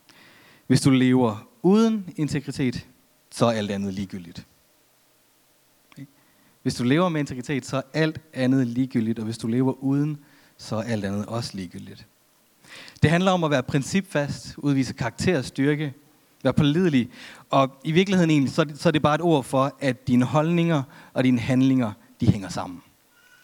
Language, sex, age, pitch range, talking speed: Danish, male, 30-49, 125-160 Hz, 155 wpm